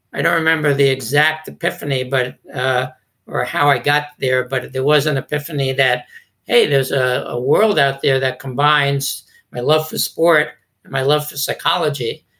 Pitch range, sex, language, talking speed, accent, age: 130-145 Hz, male, English, 180 wpm, American, 60-79